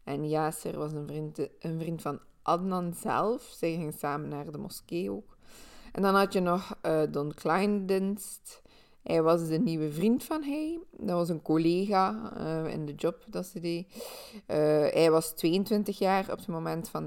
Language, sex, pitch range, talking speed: Dutch, female, 155-190 Hz, 185 wpm